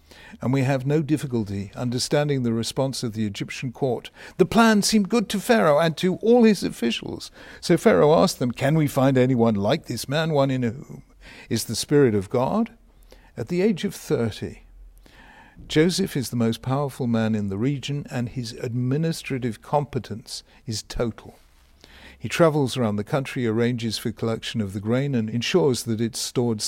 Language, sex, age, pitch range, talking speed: English, male, 60-79, 110-140 Hz, 175 wpm